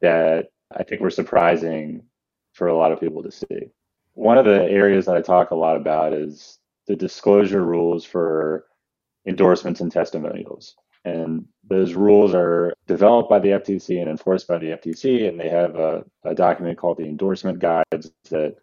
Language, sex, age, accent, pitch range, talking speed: English, male, 30-49, American, 80-95 Hz, 175 wpm